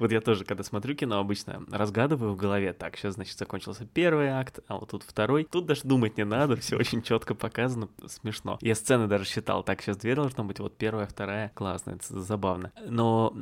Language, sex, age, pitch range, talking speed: Russian, male, 20-39, 100-125 Hz, 205 wpm